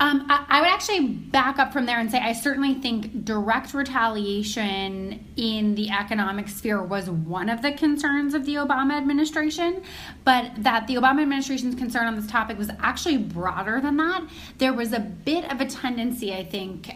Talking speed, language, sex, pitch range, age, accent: 180 wpm, English, female, 210-270 Hz, 20-39, American